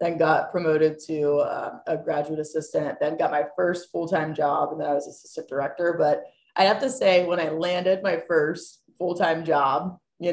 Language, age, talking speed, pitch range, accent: English, 20-39, 190 wpm, 155-180 Hz, American